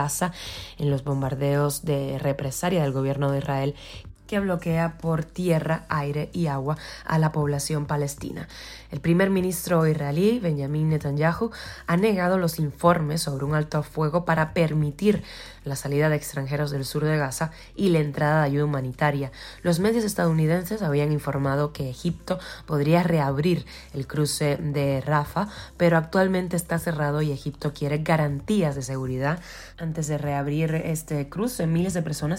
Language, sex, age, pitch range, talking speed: Spanish, female, 20-39, 145-170 Hz, 150 wpm